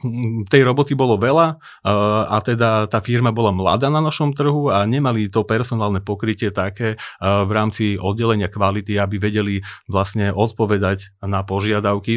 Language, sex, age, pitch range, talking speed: Slovak, male, 30-49, 100-115 Hz, 155 wpm